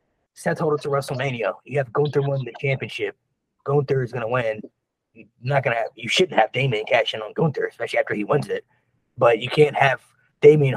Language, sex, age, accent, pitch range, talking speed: English, male, 20-39, American, 135-160 Hz, 200 wpm